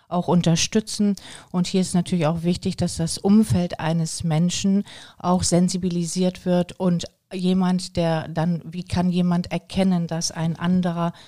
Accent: German